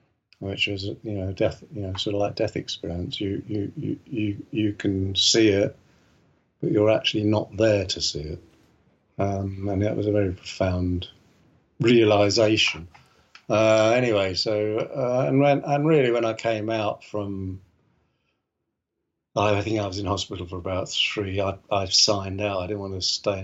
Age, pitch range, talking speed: 50-69, 95-110 Hz, 170 wpm